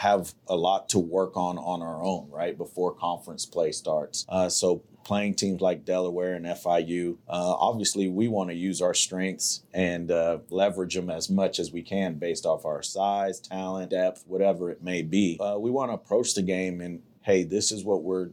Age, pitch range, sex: 30-49, 85-100 Hz, male